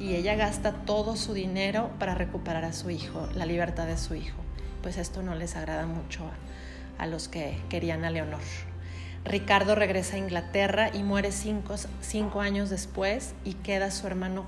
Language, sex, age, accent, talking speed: Spanish, female, 30-49, Mexican, 180 wpm